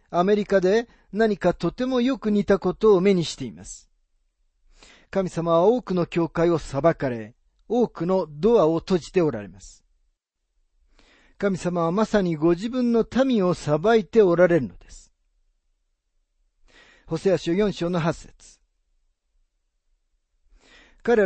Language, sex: Japanese, male